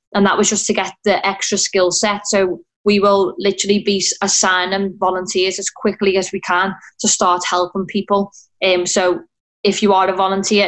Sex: female